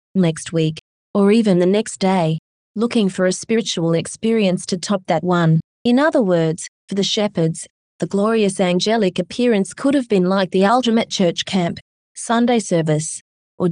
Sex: female